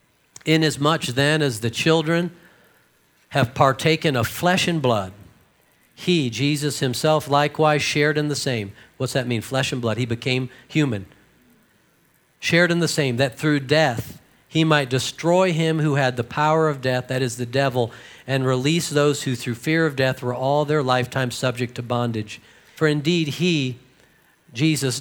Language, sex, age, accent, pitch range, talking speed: English, male, 50-69, American, 125-155 Hz, 165 wpm